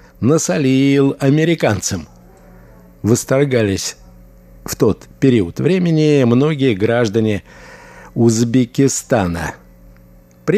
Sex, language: male, Russian